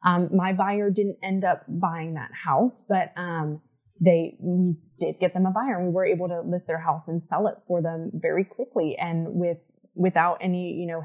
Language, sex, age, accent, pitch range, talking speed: English, female, 20-39, American, 170-210 Hz, 210 wpm